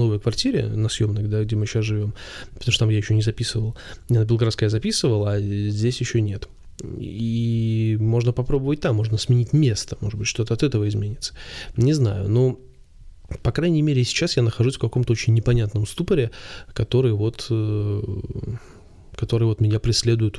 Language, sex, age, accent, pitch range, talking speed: Russian, male, 20-39, native, 110-125 Hz, 170 wpm